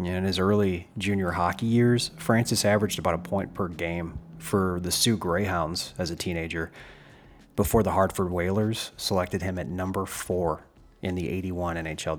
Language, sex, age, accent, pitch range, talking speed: English, male, 30-49, American, 85-110 Hz, 160 wpm